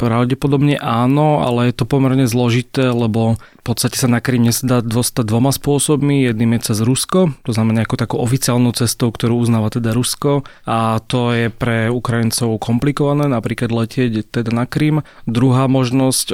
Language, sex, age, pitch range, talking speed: Slovak, male, 30-49, 110-125 Hz, 160 wpm